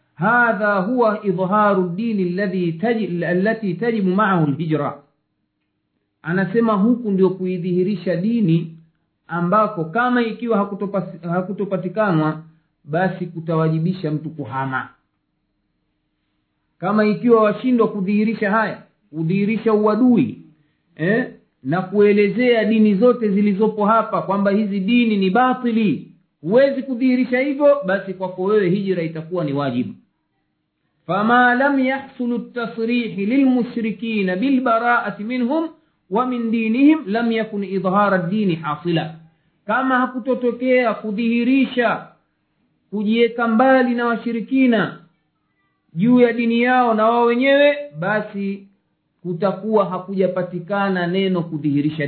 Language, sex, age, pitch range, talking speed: Swahili, male, 50-69, 180-235 Hz, 100 wpm